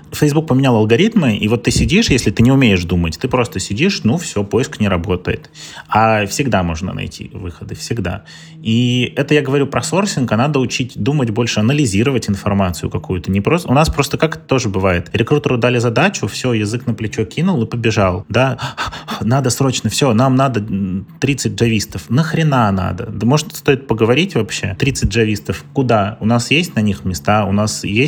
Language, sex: Russian, male